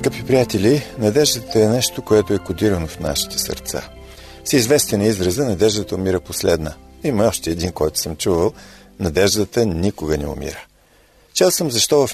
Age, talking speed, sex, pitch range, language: 40-59, 155 wpm, male, 90-125 Hz, Bulgarian